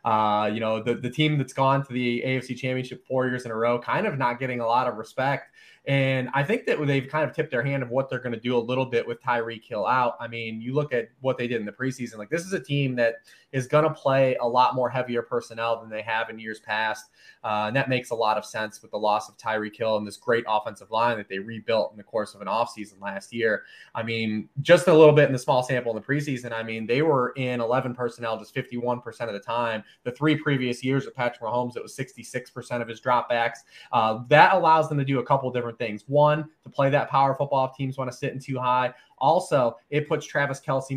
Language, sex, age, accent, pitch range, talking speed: English, male, 20-39, American, 115-135 Hz, 260 wpm